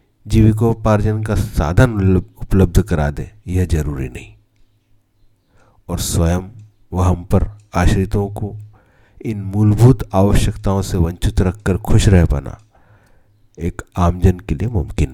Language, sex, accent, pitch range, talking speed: Hindi, male, native, 85-105 Hz, 120 wpm